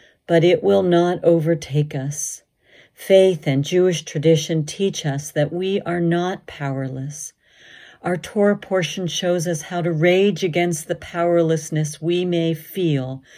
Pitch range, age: 160-195 Hz, 40-59